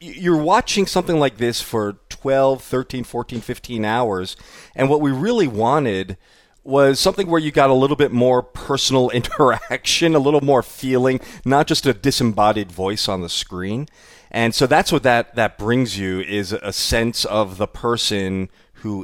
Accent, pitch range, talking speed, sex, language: American, 105-135 Hz, 170 wpm, male, English